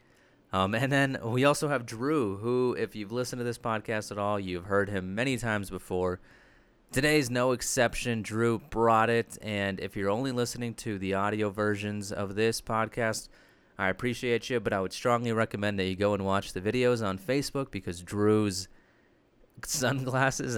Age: 30-49